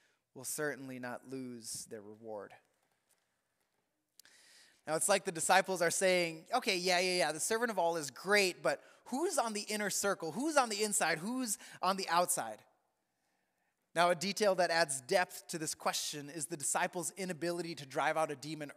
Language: English